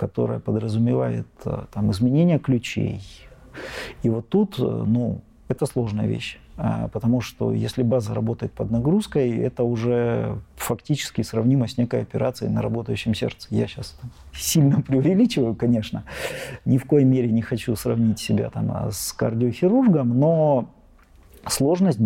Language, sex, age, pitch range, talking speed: Russian, male, 40-59, 110-140 Hz, 130 wpm